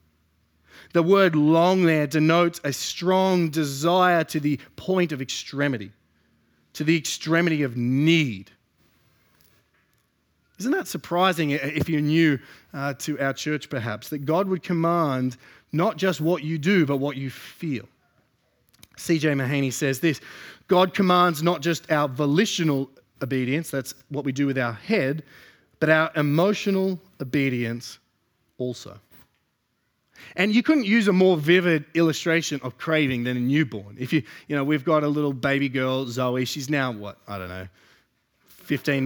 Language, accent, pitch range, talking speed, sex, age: English, Australian, 135-180 Hz, 145 wpm, male, 30-49